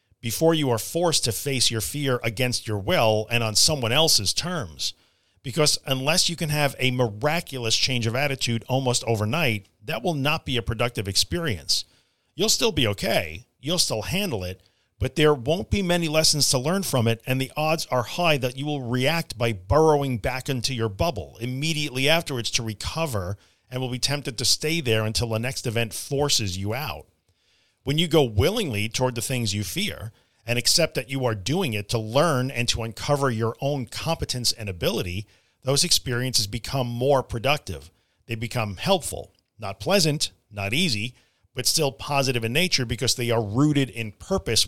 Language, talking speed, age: English, 180 wpm, 50-69